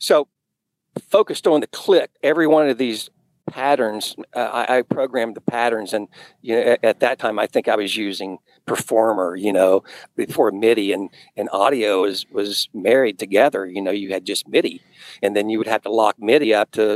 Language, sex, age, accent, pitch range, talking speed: English, male, 50-69, American, 110-140 Hz, 190 wpm